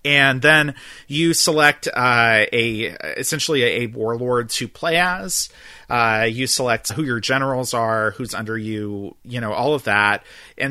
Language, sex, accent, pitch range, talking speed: English, male, American, 120-155 Hz, 160 wpm